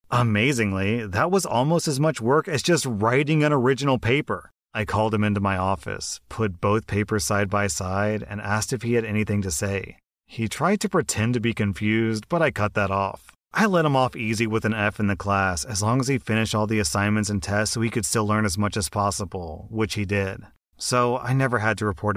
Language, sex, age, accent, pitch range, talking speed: English, male, 30-49, American, 105-135 Hz, 225 wpm